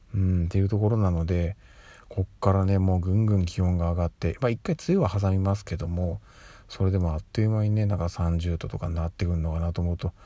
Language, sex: Japanese, male